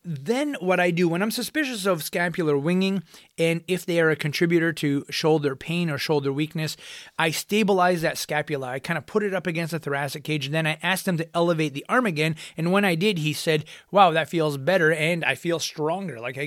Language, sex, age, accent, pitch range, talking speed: English, male, 30-49, American, 150-180 Hz, 225 wpm